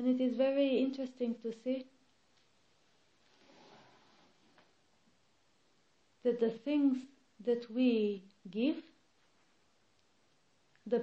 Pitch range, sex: 225-255 Hz, female